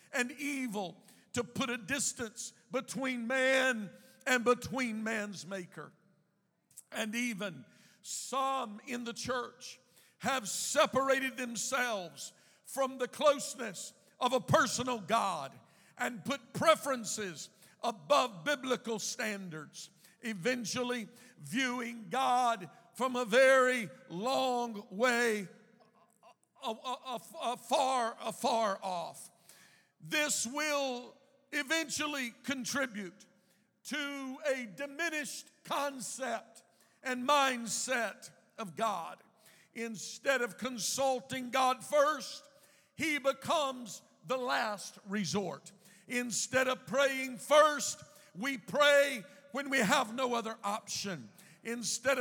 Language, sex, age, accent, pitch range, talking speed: English, male, 50-69, American, 215-270 Hz, 90 wpm